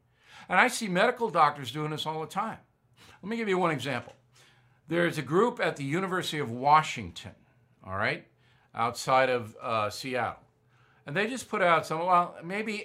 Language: English